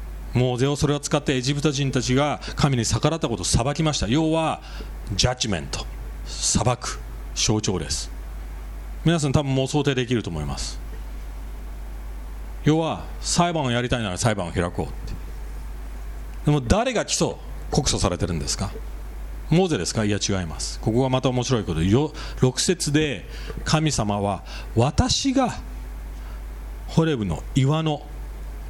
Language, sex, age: English, male, 40-59